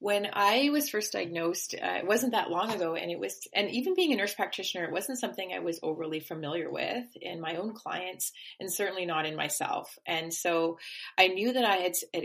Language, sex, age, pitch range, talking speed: English, female, 30-49, 160-210 Hz, 220 wpm